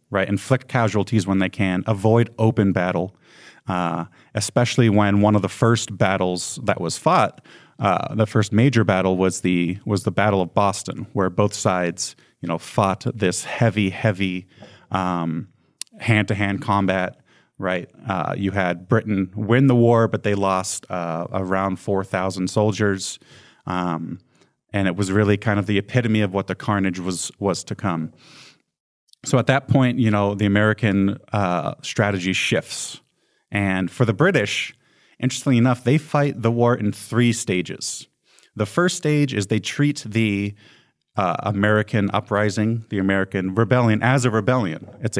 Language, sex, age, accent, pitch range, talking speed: English, male, 30-49, American, 95-115 Hz, 155 wpm